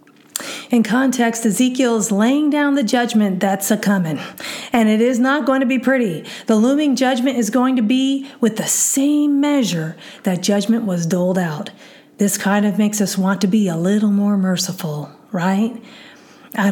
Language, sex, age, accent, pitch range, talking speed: English, female, 40-59, American, 200-255 Hz, 170 wpm